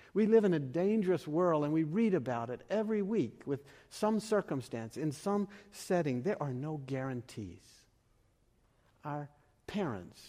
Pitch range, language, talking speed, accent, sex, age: 115-175 Hz, English, 145 wpm, American, male, 60-79